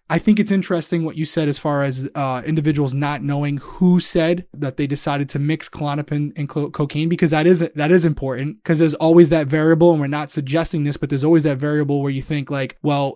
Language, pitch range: English, 145-170 Hz